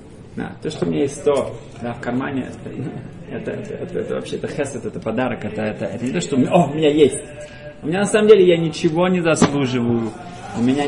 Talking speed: 245 wpm